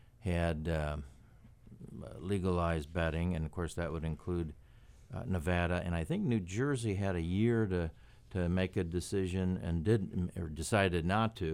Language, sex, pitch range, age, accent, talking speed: English, male, 80-100 Hz, 60-79, American, 160 wpm